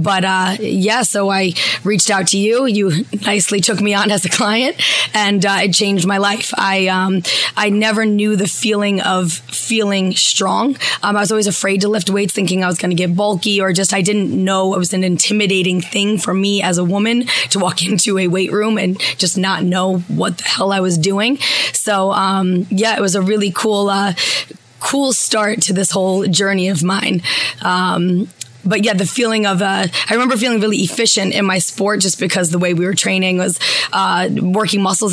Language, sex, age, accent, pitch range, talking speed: English, female, 20-39, American, 185-210 Hz, 205 wpm